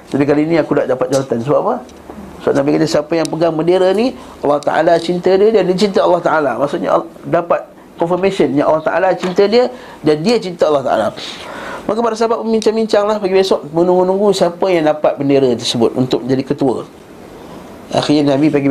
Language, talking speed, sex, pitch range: Malay, 190 wpm, male, 125-175 Hz